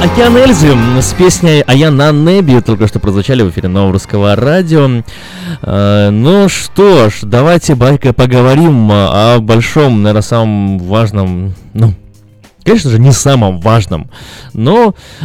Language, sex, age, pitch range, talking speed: Russian, male, 20-39, 100-135 Hz, 130 wpm